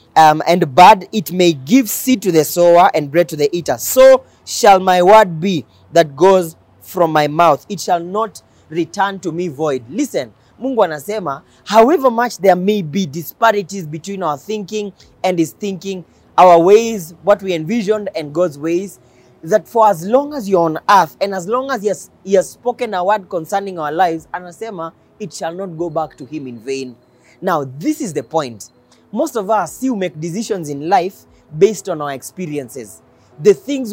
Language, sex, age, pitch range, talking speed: English, male, 30-49, 165-225 Hz, 185 wpm